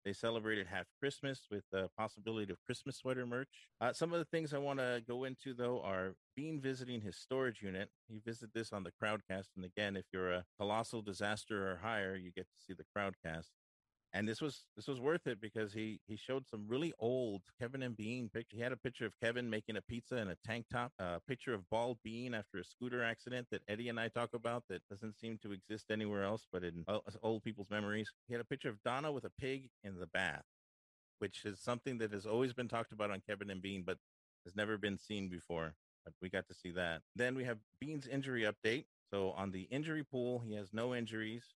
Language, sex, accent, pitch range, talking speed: English, male, American, 95-120 Hz, 230 wpm